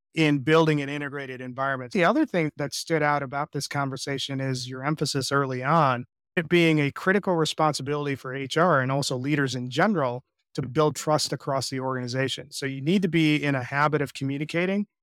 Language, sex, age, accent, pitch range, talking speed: English, male, 30-49, American, 135-155 Hz, 190 wpm